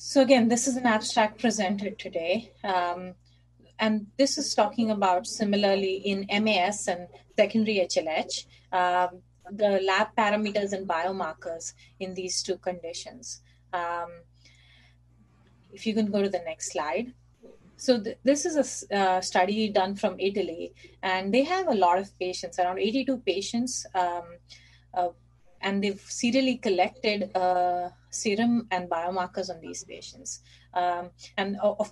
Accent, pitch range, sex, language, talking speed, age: Indian, 170-210 Hz, female, English, 135 wpm, 30-49